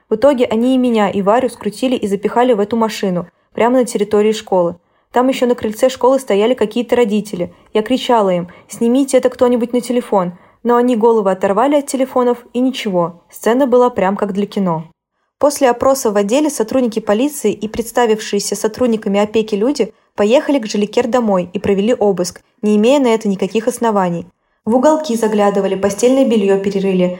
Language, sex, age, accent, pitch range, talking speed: Russian, female, 20-39, native, 200-245 Hz, 170 wpm